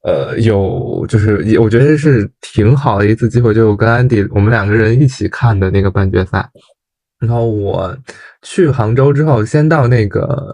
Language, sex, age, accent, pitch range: Chinese, male, 20-39, native, 105-125 Hz